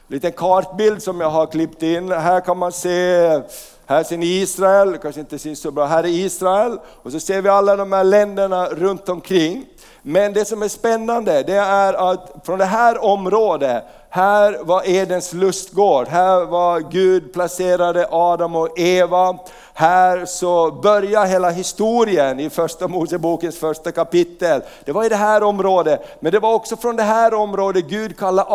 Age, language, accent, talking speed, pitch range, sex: 50-69, Swedish, native, 170 wpm, 170-205 Hz, male